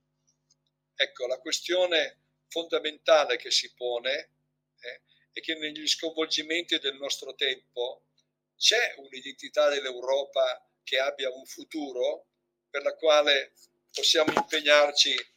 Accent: native